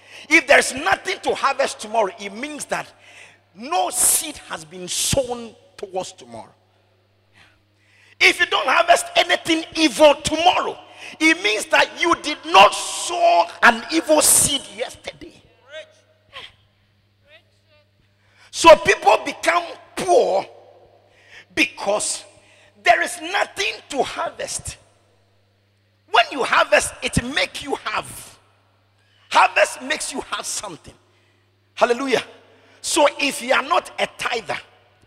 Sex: male